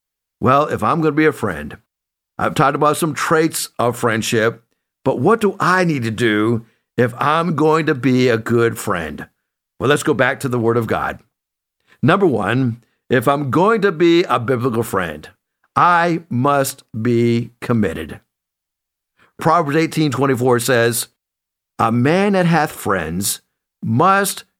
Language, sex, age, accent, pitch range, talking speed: English, male, 60-79, American, 120-190 Hz, 150 wpm